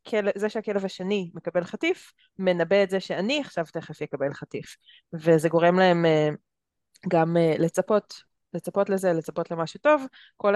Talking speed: 135 wpm